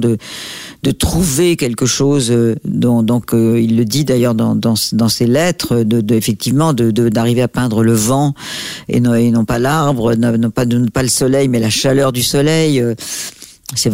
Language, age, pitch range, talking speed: French, 50-69, 115-140 Hz, 200 wpm